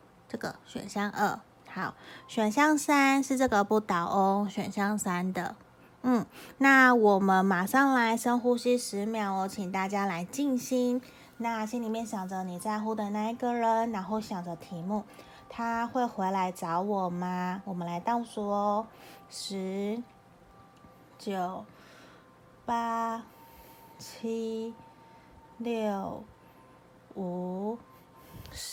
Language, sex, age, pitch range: Chinese, female, 30-49, 190-230 Hz